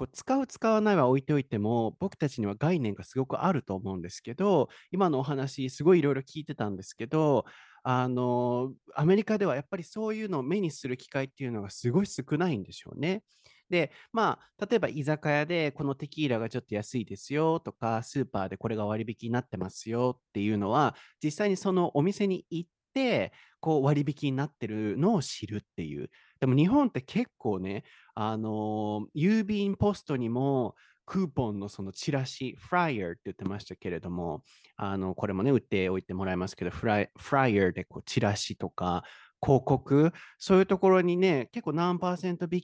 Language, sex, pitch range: Japanese, male, 105-170 Hz